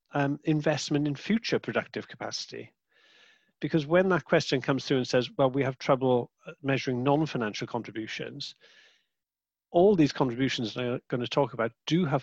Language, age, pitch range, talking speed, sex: English, 50-69, 125-155 Hz, 160 wpm, male